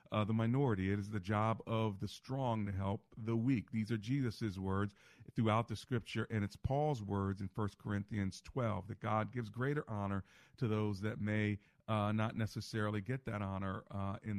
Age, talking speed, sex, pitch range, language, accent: 40-59, 190 wpm, male, 100-125 Hz, English, American